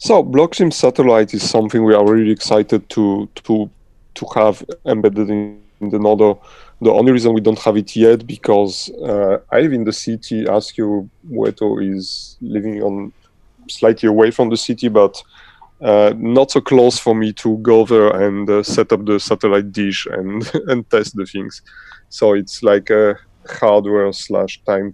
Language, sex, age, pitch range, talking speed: English, male, 30-49, 105-115 Hz, 175 wpm